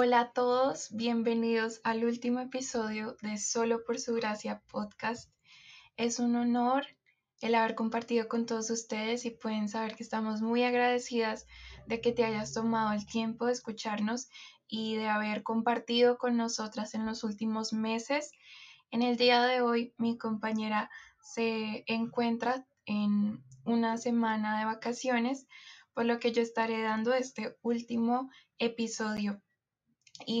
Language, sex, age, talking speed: Spanish, female, 10-29, 140 wpm